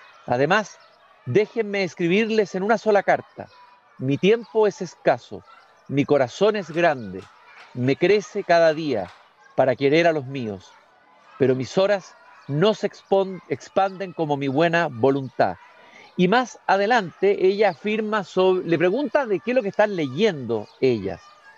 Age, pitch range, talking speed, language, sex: 50-69, 145-205 Hz, 135 wpm, Spanish, male